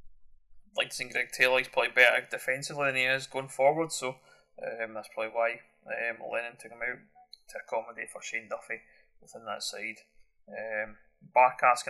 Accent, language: British, English